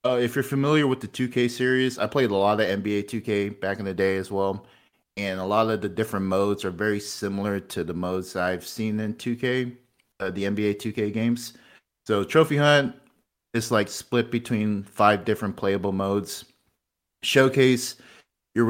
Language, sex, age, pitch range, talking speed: English, male, 30-49, 95-115 Hz, 180 wpm